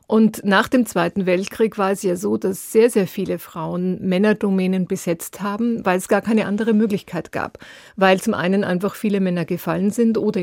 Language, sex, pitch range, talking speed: German, female, 180-215 Hz, 190 wpm